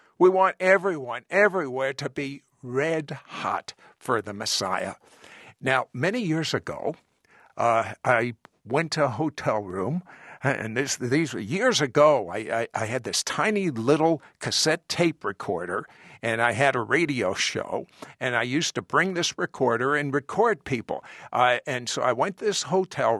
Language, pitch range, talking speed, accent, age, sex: English, 125-185 Hz, 160 wpm, American, 60-79, male